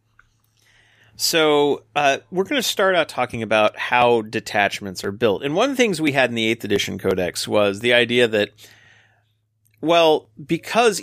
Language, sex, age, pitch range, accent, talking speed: English, male, 40-59, 110-145 Hz, American, 170 wpm